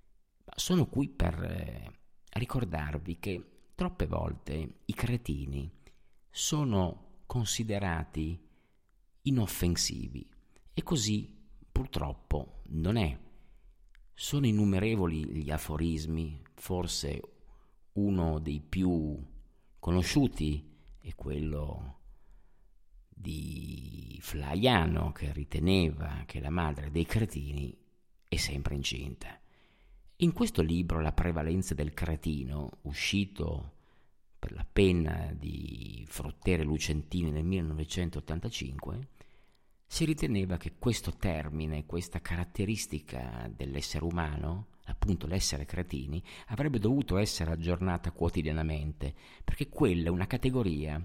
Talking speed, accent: 90 wpm, native